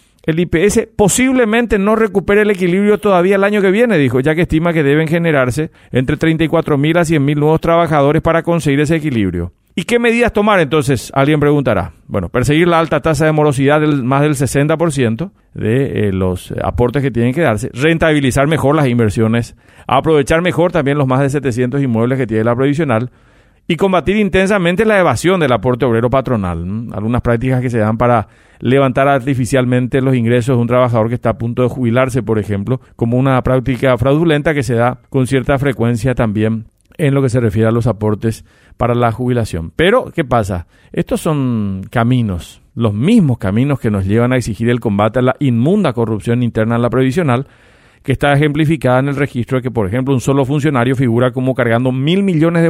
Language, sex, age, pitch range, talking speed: Spanish, male, 40-59, 120-160 Hz, 190 wpm